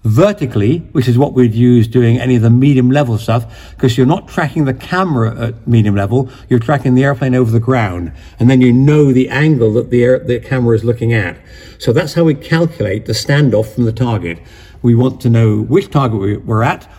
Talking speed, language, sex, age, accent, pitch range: 210 wpm, English, male, 50-69, British, 110-140 Hz